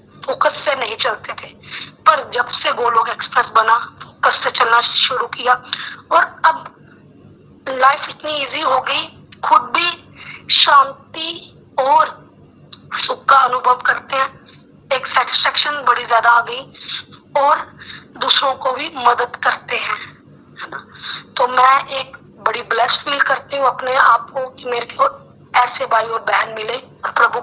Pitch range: 240-295 Hz